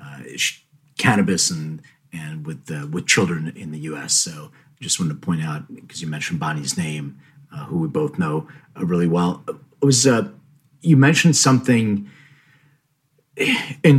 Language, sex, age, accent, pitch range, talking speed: English, male, 40-59, American, 95-145 Hz, 160 wpm